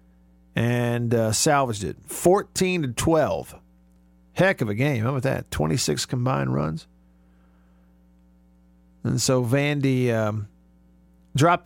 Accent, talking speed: American, 115 wpm